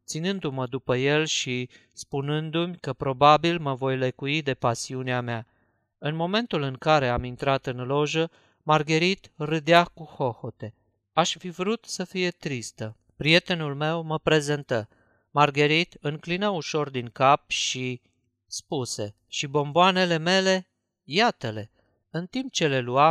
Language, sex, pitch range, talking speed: Romanian, male, 125-160 Hz, 130 wpm